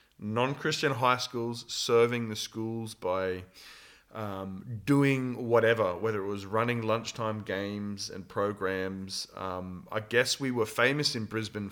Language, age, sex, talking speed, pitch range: Danish, 30-49, male, 135 wpm, 100-120 Hz